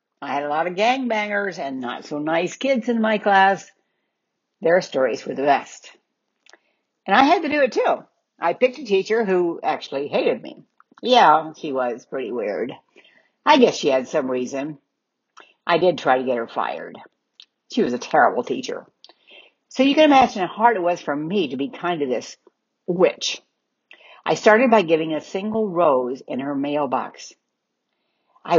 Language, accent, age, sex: English, American, 60-79, female